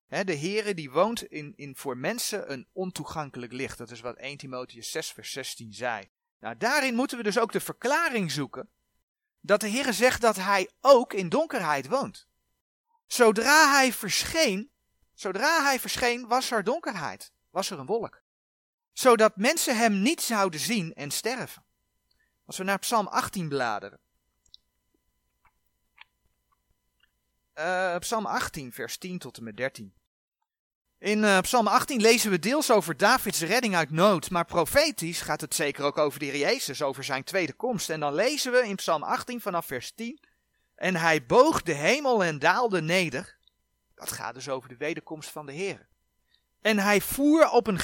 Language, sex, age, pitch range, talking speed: Dutch, male, 40-59, 150-240 Hz, 165 wpm